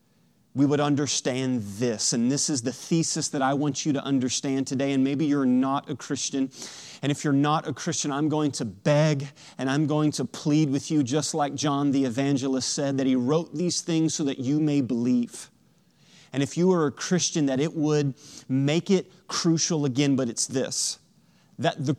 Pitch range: 140-175 Hz